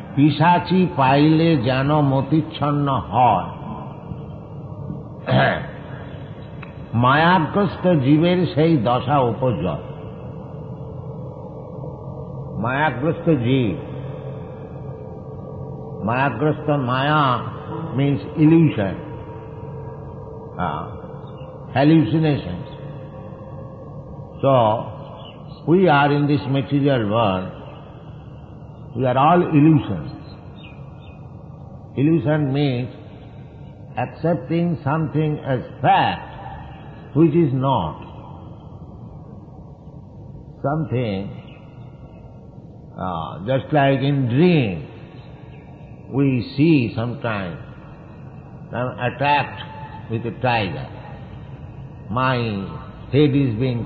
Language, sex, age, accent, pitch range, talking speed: English, male, 60-79, Indian, 130-150 Hz, 60 wpm